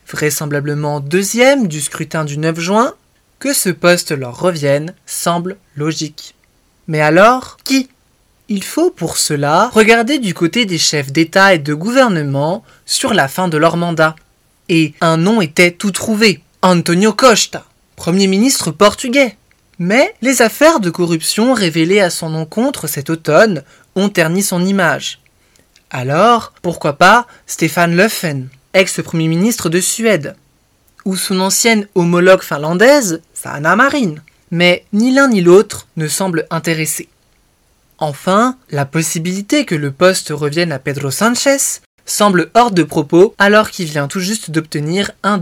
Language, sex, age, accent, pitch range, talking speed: French, male, 20-39, French, 155-205 Hz, 140 wpm